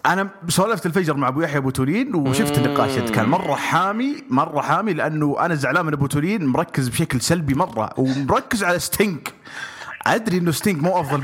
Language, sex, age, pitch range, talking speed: English, male, 30-49, 125-185 Hz, 175 wpm